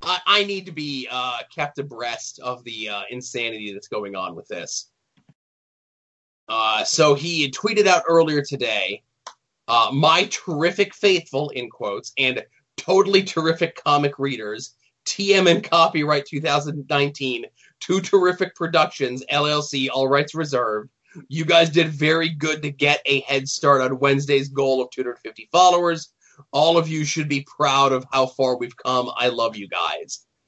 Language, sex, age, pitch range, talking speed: English, male, 20-39, 130-160 Hz, 150 wpm